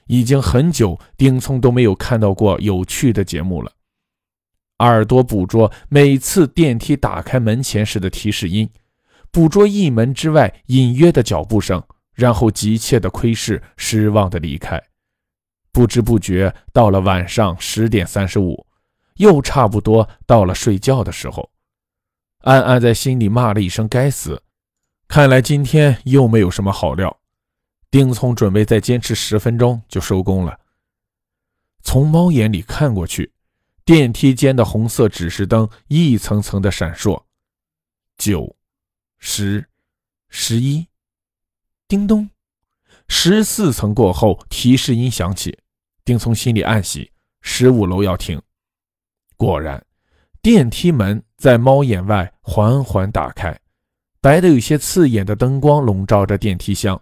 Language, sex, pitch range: Chinese, male, 95-130 Hz